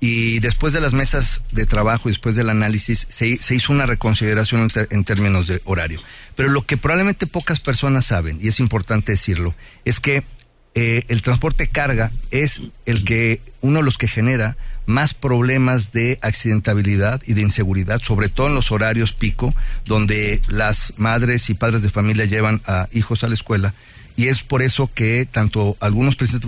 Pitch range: 110-130 Hz